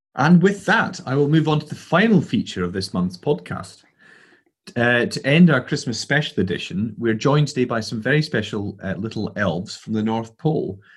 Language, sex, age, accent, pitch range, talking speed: English, male, 30-49, British, 105-150 Hz, 195 wpm